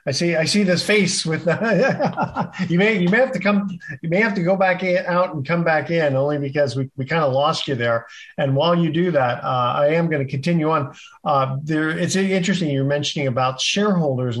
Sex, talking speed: male, 230 wpm